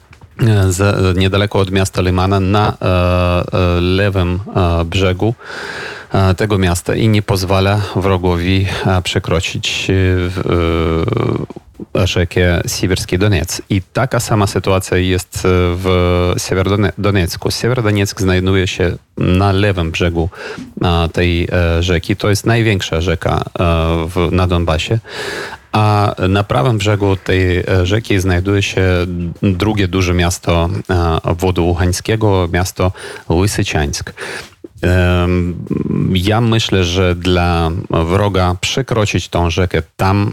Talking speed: 90 wpm